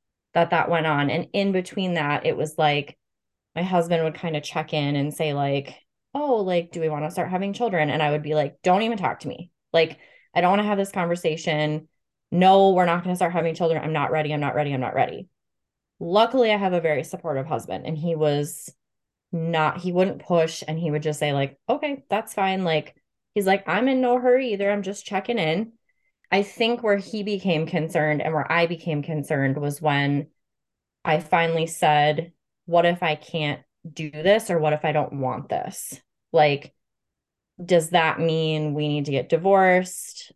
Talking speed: 205 wpm